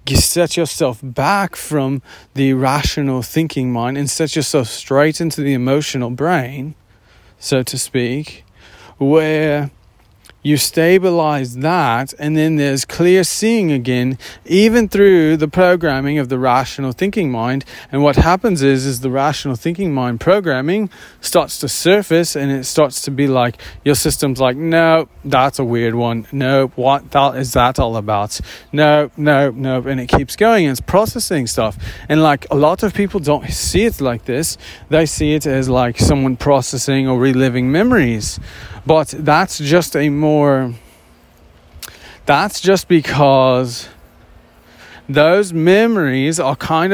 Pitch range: 130-165 Hz